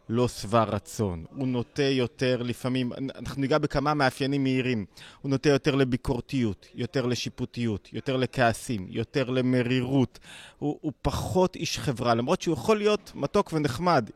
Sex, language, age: male, Hebrew, 30-49